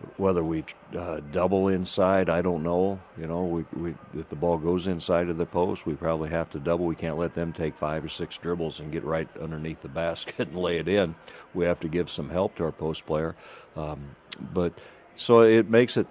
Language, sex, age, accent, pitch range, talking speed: English, male, 50-69, American, 80-90 Hz, 225 wpm